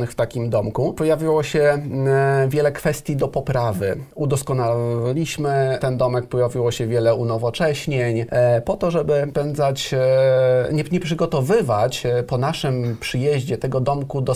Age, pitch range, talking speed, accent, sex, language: 30-49, 120-150 Hz, 140 wpm, native, male, Polish